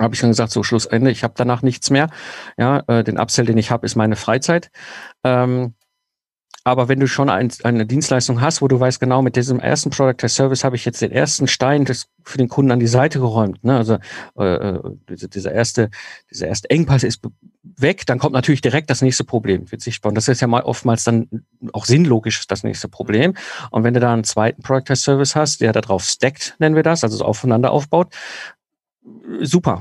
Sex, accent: male, German